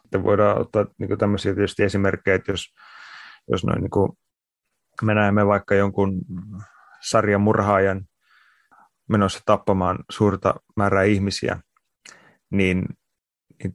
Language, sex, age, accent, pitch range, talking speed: Finnish, male, 30-49, native, 95-105 Hz, 90 wpm